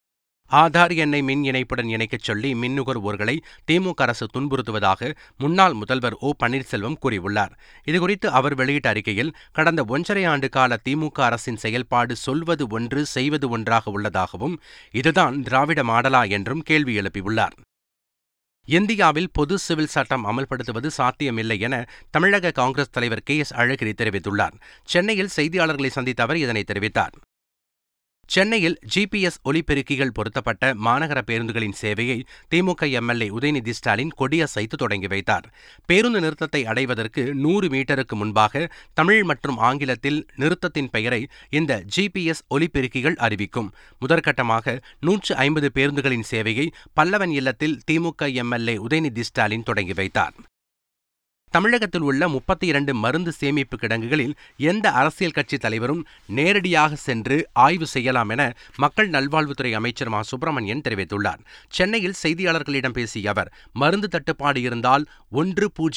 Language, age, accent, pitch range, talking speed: Tamil, 30-49, native, 115-155 Hz, 110 wpm